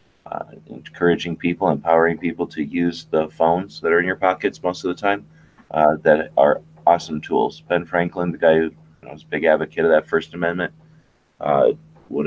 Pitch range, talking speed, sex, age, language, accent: 80-90 Hz, 180 wpm, male, 30-49, English, American